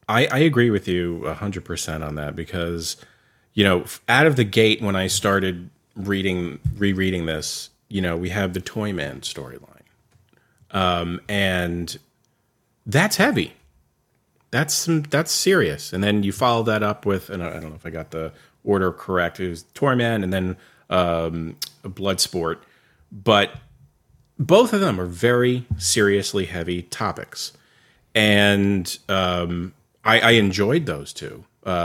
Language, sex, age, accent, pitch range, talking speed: English, male, 40-59, American, 90-115 Hz, 145 wpm